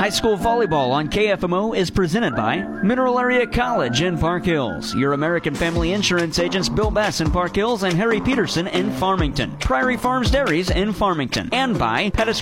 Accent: American